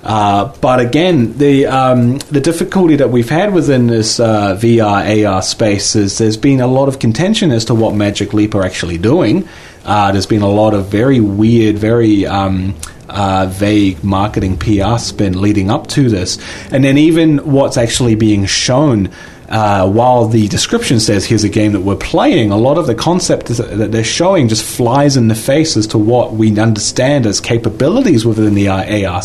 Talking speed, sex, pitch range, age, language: 185 wpm, male, 105-125 Hz, 30-49, English